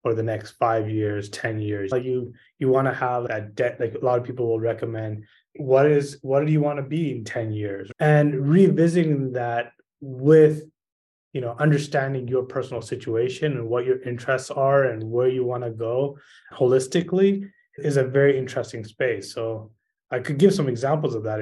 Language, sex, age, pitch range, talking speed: English, male, 20-39, 120-150 Hz, 190 wpm